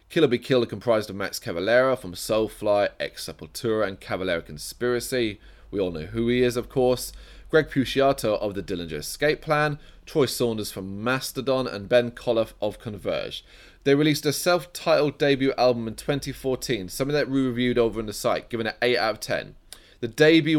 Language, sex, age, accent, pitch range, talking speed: English, male, 20-39, British, 105-135 Hz, 185 wpm